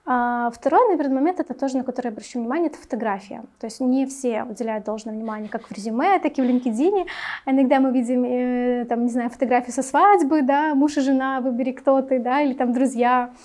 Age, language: 20-39, Russian